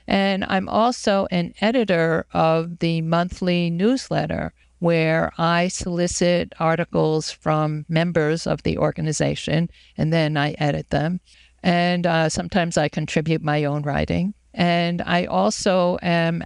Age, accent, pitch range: 50-69, American, 155-180 Hz